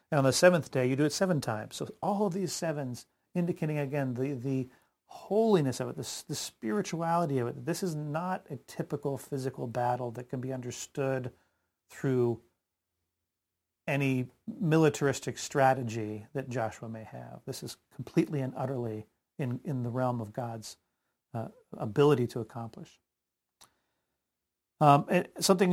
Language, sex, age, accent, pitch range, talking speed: English, male, 40-59, American, 120-155 Hz, 145 wpm